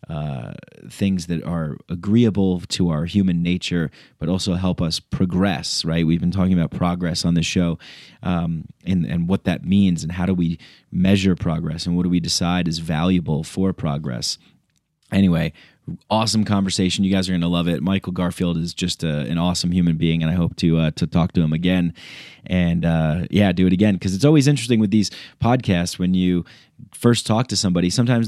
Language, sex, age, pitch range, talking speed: English, male, 30-49, 85-100 Hz, 195 wpm